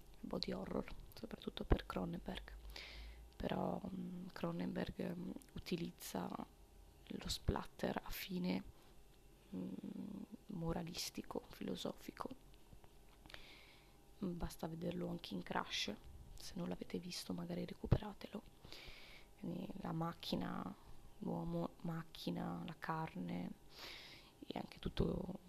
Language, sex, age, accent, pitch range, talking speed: Italian, female, 20-39, native, 160-195 Hz, 90 wpm